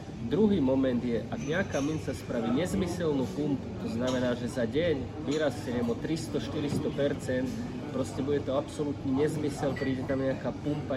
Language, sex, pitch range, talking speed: Slovak, male, 120-145 Hz, 140 wpm